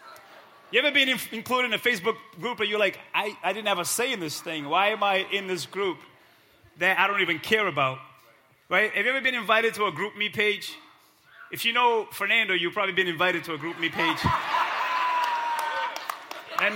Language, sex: English, male